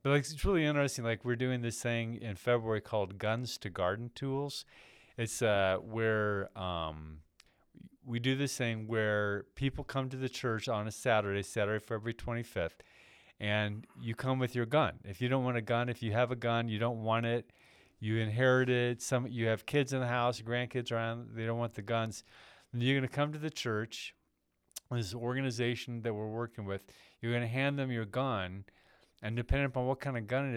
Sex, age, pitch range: male, 40-59, 110-130 Hz